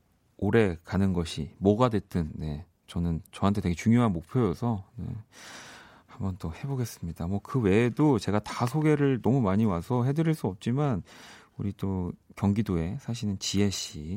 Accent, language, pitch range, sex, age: native, Korean, 90-125 Hz, male, 40-59